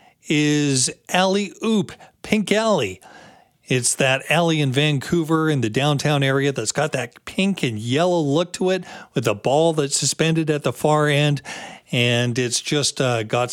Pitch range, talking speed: 120-160 Hz, 165 wpm